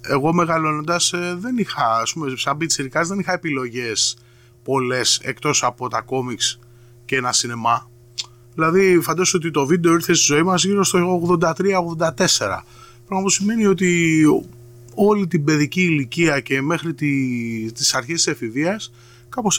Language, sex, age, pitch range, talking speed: Greek, male, 30-49, 120-165 Hz, 145 wpm